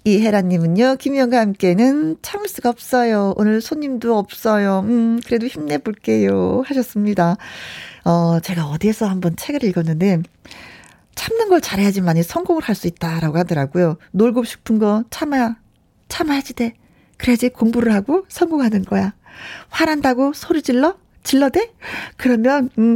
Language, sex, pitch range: Korean, female, 195-270 Hz